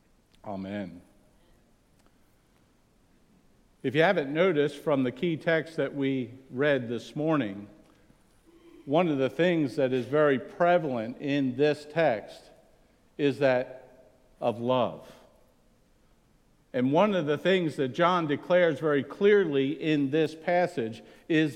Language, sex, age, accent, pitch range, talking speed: English, male, 50-69, American, 140-205 Hz, 120 wpm